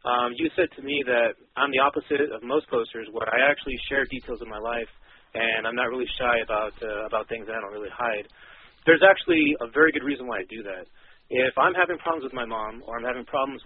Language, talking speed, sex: English, 240 wpm, male